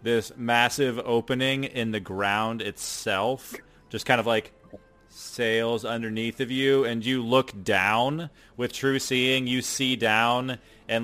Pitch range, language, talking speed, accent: 110-125 Hz, English, 140 wpm, American